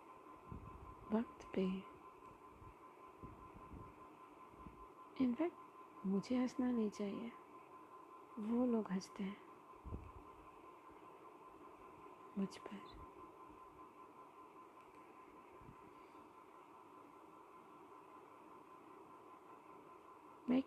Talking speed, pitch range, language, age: 40 wpm, 235-345 Hz, Hindi, 30-49